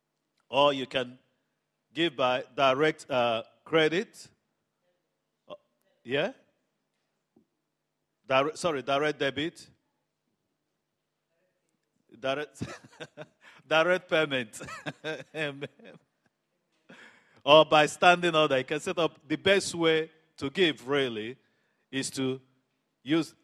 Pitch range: 110-145 Hz